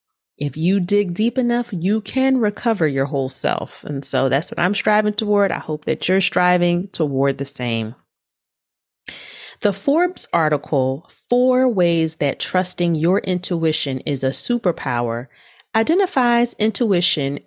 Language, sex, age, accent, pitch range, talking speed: English, female, 30-49, American, 145-205 Hz, 135 wpm